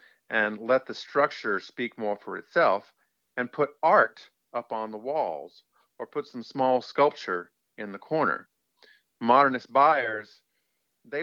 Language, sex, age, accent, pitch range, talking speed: English, male, 50-69, American, 110-135 Hz, 140 wpm